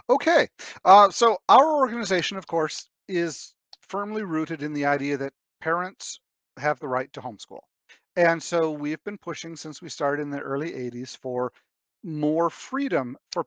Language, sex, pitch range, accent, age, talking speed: English, male, 145-200 Hz, American, 40-59, 160 wpm